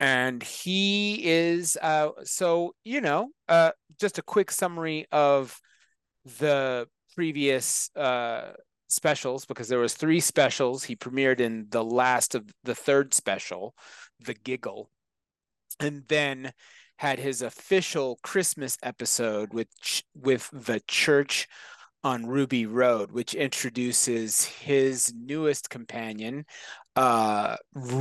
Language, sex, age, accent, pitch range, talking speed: English, male, 30-49, American, 125-155 Hz, 115 wpm